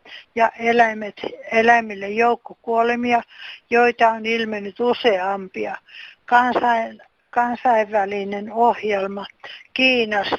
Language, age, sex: Finnish, 60-79, female